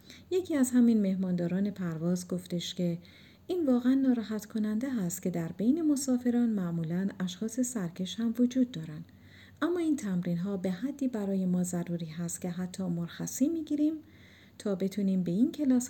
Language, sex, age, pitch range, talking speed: Persian, female, 40-59, 175-250 Hz, 155 wpm